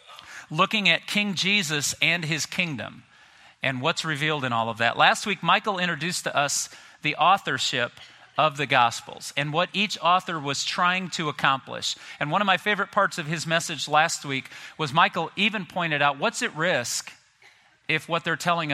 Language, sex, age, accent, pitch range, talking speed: English, male, 40-59, American, 140-180 Hz, 180 wpm